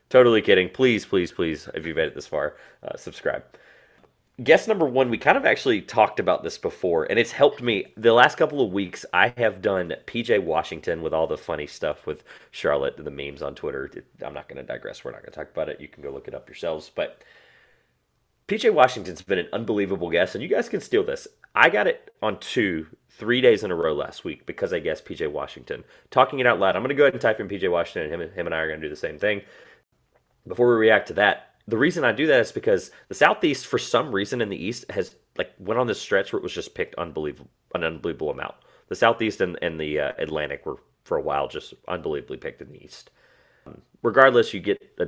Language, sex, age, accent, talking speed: English, male, 30-49, American, 240 wpm